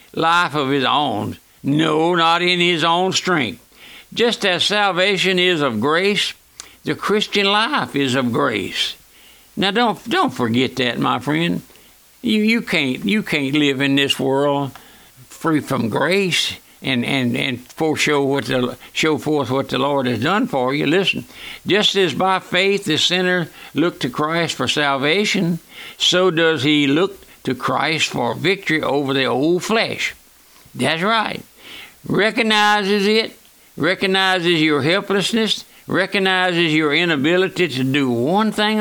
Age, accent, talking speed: 60-79, American, 145 wpm